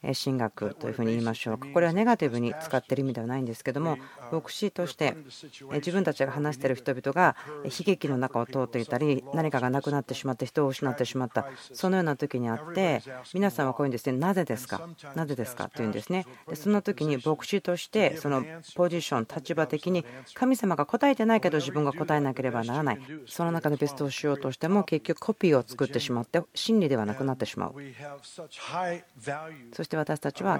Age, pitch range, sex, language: 40-59, 130-170 Hz, female, Japanese